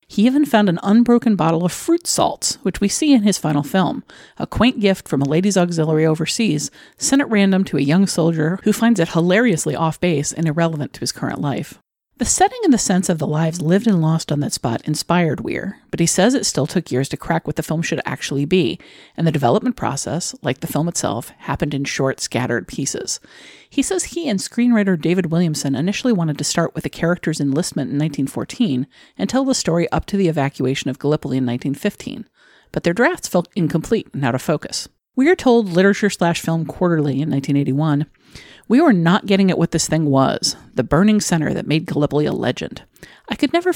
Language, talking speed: English, 205 wpm